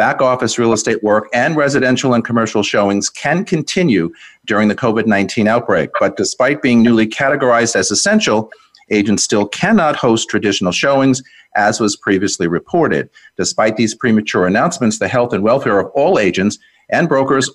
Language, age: English, 50-69